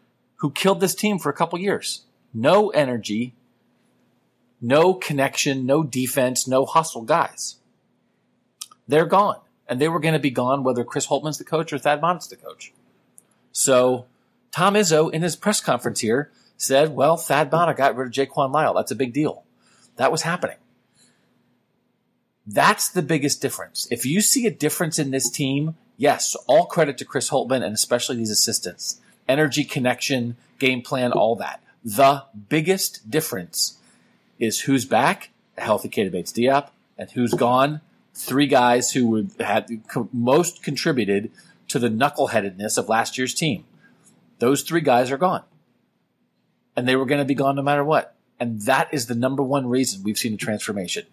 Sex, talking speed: male, 165 wpm